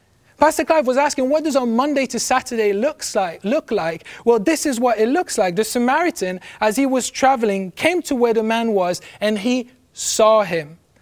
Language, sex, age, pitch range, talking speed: English, male, 30-49, 205-265 Hz, 190 wpm